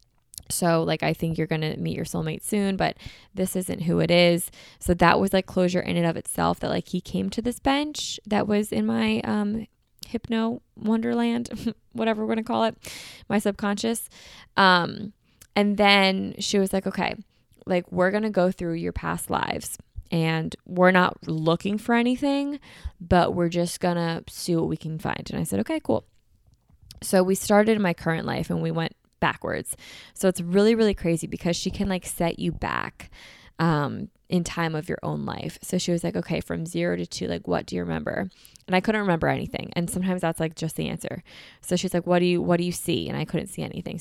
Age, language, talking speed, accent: 10-29, English, 210 wpm, American